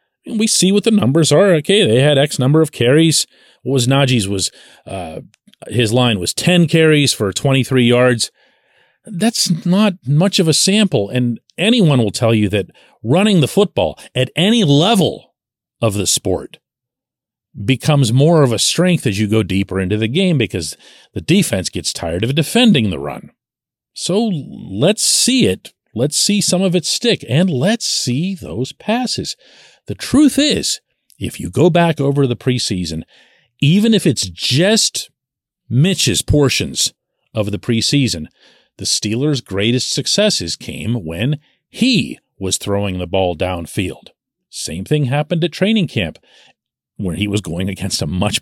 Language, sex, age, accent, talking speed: English, male, 40-59, American, 155 wpm